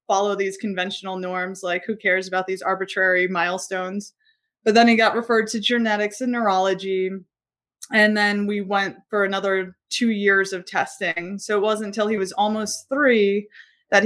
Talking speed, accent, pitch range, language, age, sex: 165 wpm, American, 190-225 Hz, English, 20-39, female